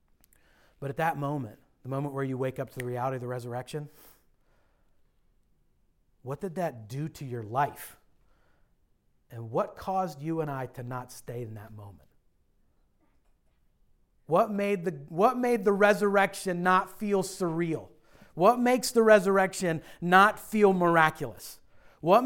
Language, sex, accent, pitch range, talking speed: English, male, American, 140-195 Hz, 135 wpm